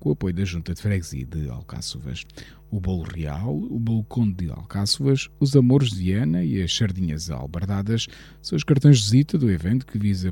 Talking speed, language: 190 wpm, Portuguese